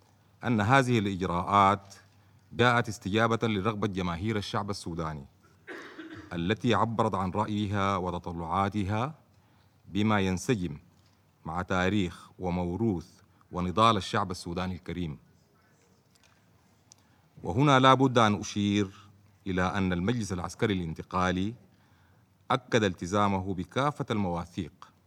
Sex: male